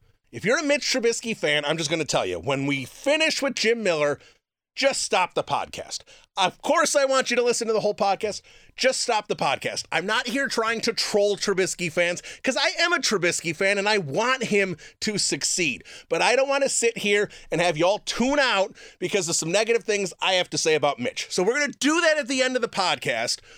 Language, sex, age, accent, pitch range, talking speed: English, male, 30-49, American, 165-230 Hz, 225 wpm